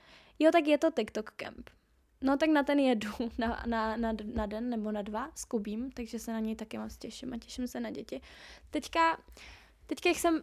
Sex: female